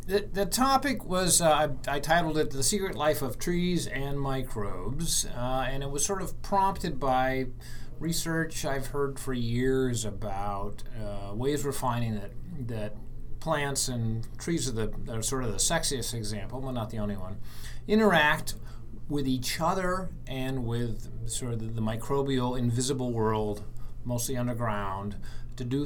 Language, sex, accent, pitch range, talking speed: English, male, American, 110-135 Hz, 160 wpm